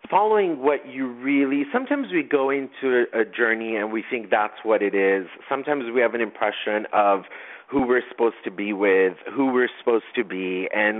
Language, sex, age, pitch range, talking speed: English, male, 30-49, 110-130 Hz, 190 wpm